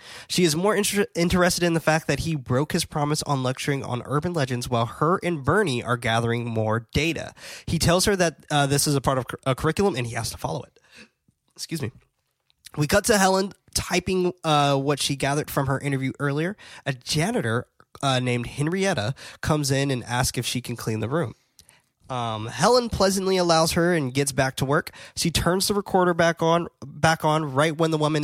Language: English